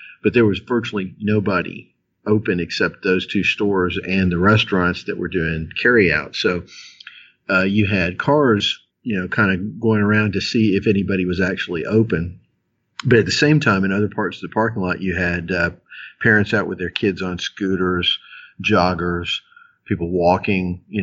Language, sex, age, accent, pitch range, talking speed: English, male, 50-69, American, 90-105 Hz, 175 wpm